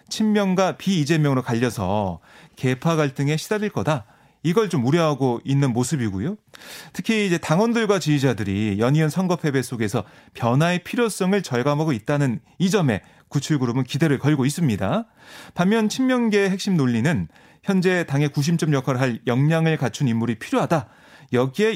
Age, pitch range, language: 30-49, 130-180 Hz, Korean